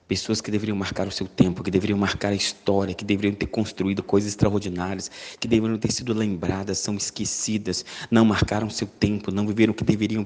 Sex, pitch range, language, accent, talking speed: male, 105-135 Hz, Portuguese, Brazilian, 205 wpm